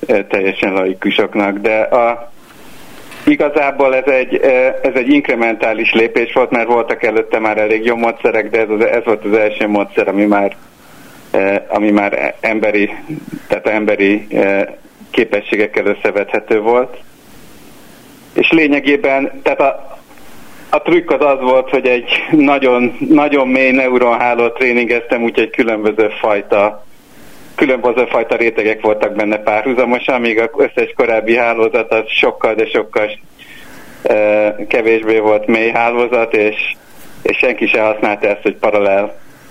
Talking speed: 125 wpm